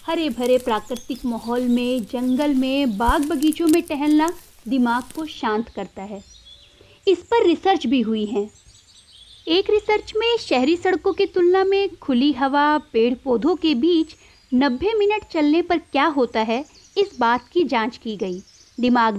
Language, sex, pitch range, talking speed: Hindi, female, 240-350 Hz, 155 wpm